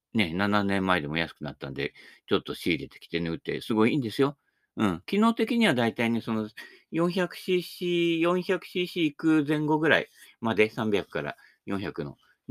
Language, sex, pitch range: Japanese, male, 105-170 Hz